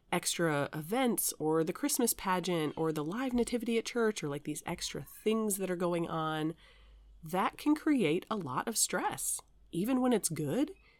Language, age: English, 30-49